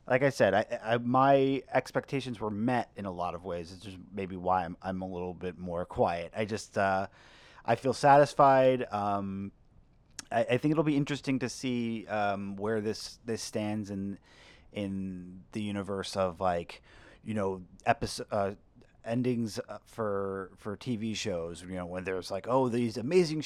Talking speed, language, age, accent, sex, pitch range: 175 wpm, English, 30-49, American, male, 95-120 Hz